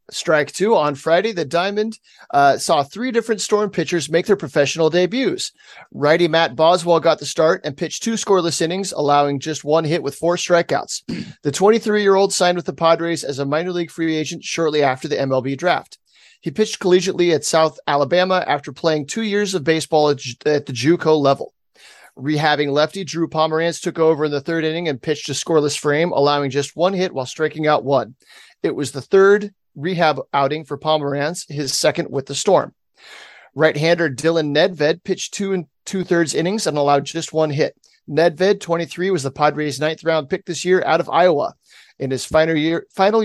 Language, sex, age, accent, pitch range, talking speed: English, male, 30-49, American, 150-180 Hz, 190 wpm